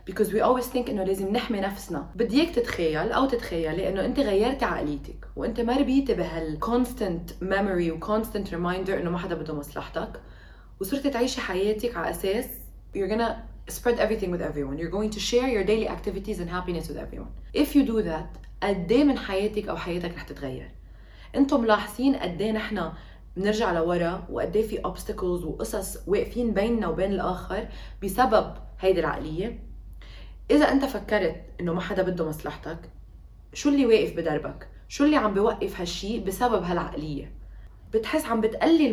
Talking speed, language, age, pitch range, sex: 160 wpm, Arabic, 20-39, 180-235 Hz, female